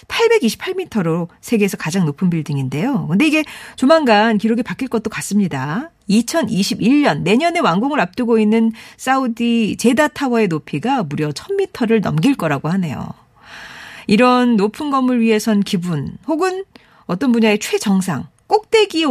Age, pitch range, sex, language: 40-59, 185-305 Hz, female, Korean